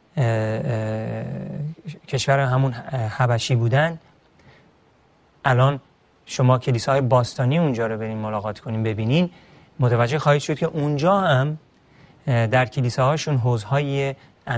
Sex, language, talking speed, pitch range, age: male, Persian, 105 wpm, 120-150 Hz, 40-59